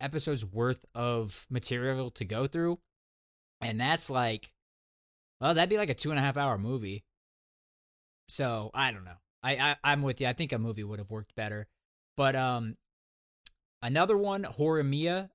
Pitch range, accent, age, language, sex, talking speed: 105-135 Hz, American, 20-39, English, male, 170 wpm